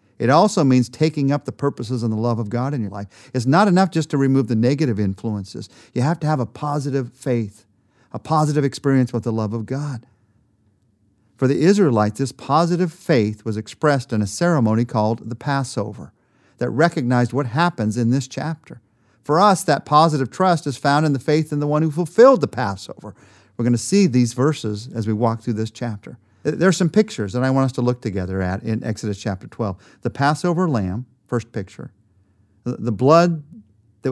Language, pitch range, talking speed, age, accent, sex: English, 110-145 Hz, 200 wpm, 50-69, American, male